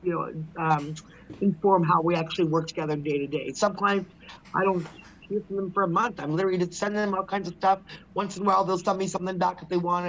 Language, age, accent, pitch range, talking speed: English, 30-49, American, 165-190 Hz, 250 wpm